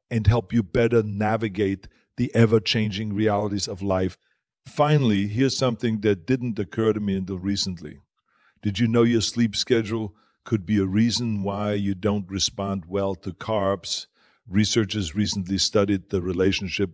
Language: English